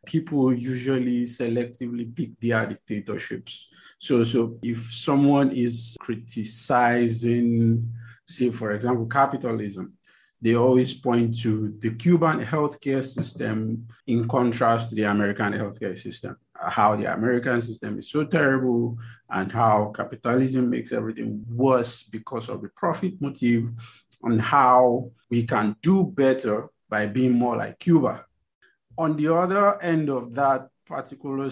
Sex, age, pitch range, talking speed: male, 50-69, 110-130 Hz, 130 wpm